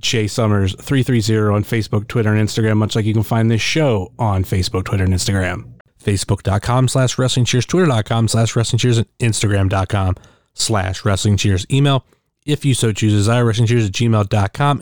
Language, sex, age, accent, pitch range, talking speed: English, male, 30-49, American, 105-130 Hz, 160 wpm